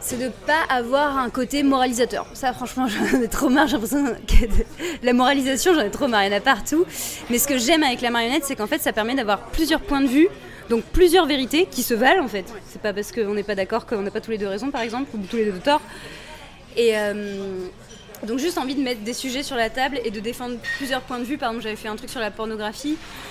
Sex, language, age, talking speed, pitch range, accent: female, French, 20-39, 260 wpm, 220-270 Hz, French